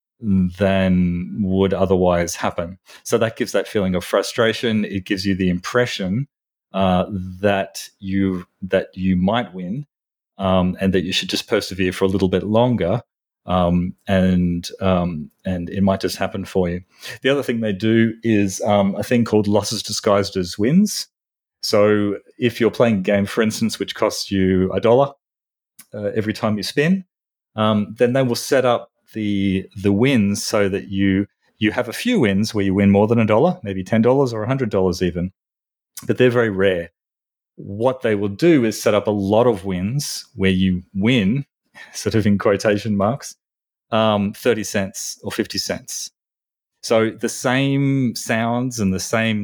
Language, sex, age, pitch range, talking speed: English, male, 30-49, 95-115 Hz, 175 wpm